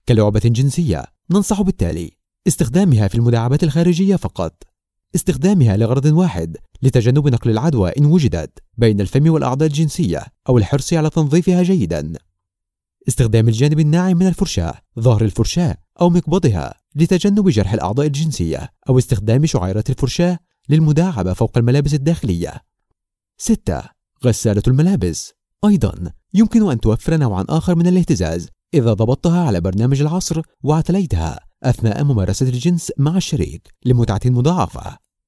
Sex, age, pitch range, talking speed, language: male, 30-49, 110-170 Hz, 120 wpm, Arabic